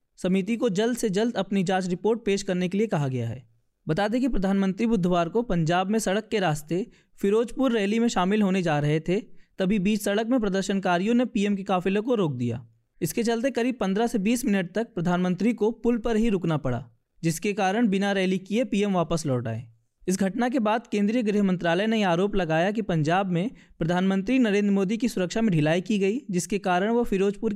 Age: 20-39